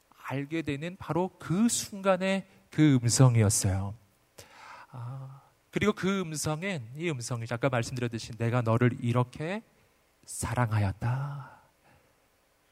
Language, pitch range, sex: Korean, 115-165 Hz, male